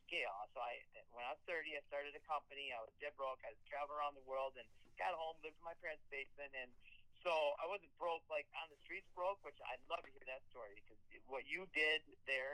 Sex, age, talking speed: male, 40-59, 240 wpm